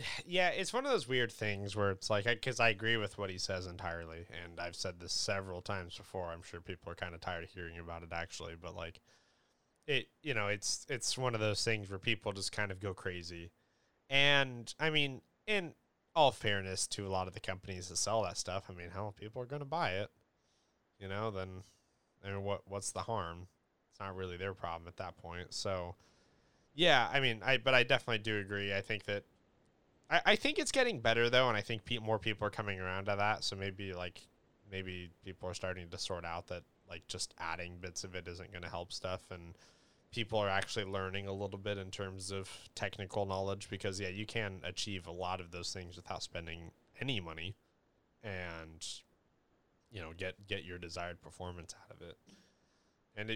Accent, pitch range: American, 90-110 Hz